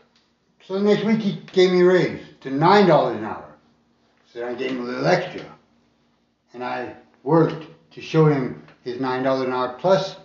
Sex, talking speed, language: male, 180 wpm, English